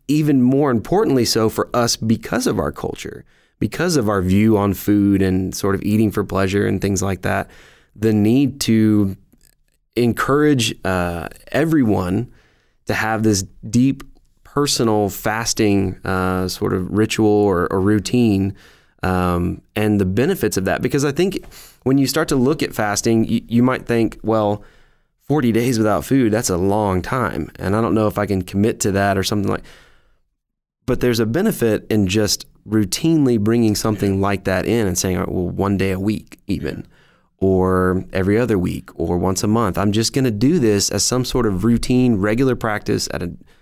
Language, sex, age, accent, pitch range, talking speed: English, male, 20-39, American, 95-120 Hz, 180 wpm